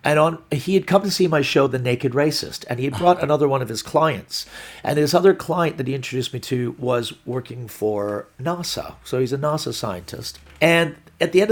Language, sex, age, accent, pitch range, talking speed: English, male, 50-69, American, 120-165 Hz, 225 wpm